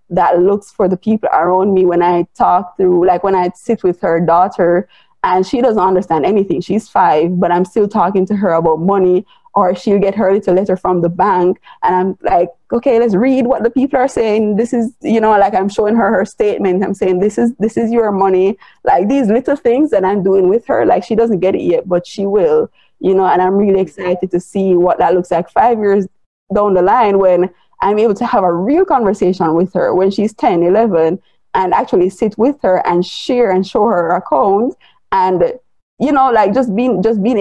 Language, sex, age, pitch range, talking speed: English, female, 20-39, 180-220 Hz, 225 wpm